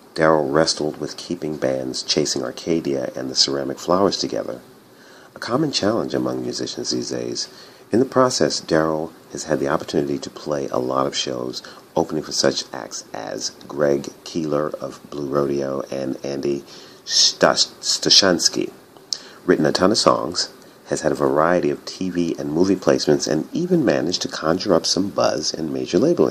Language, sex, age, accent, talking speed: English, male, 40-59, American, 160 wpm